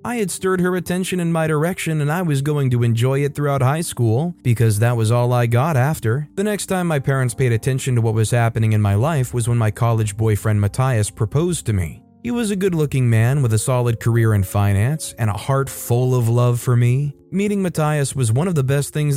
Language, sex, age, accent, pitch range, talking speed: English, male, 20-39, American, 115-145 Hz, 240 wpm